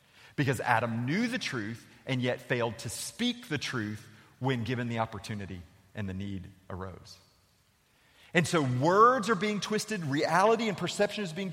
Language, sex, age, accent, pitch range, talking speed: English, male, 40-59, American, 110-155 Hz, 160 wpm